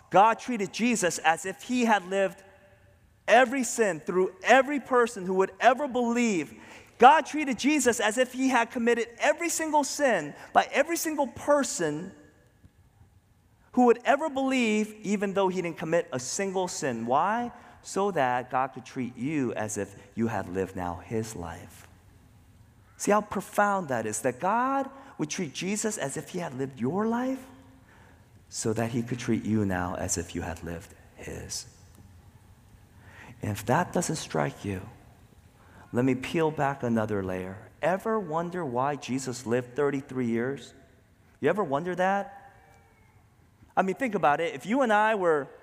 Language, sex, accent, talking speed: English, male, American, 160 wpm